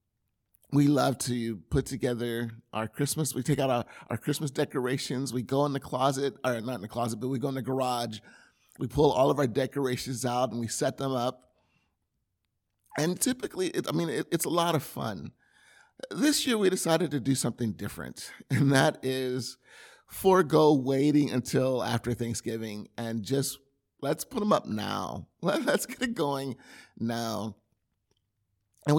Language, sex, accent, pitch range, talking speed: English, male, American, 120-150 Hz, 165 wpm